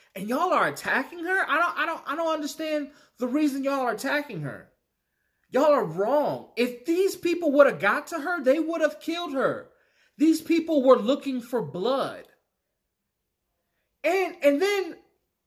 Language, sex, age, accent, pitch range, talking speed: English, male, 30-49, American, 240-320 Hz, 165 wpm